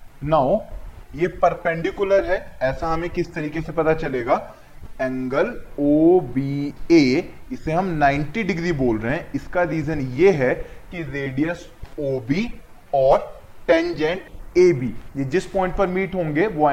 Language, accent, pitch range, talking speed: Hindi, native, 130-175 Hz, 145 wpm